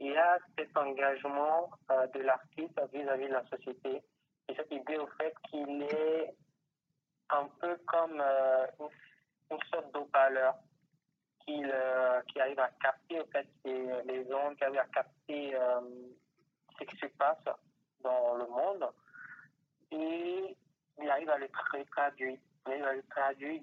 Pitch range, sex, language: 130-150 Hz, male, French